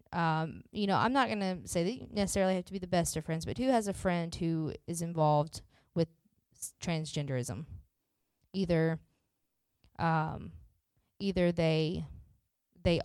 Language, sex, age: English, female, 20-39